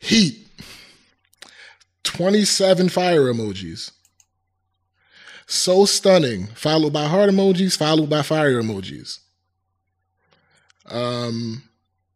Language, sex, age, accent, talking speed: English, male, 20-39, American, 75 wpm